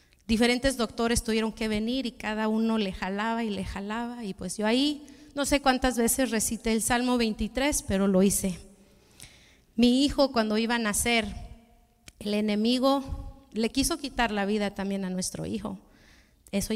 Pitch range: 205-255 Hz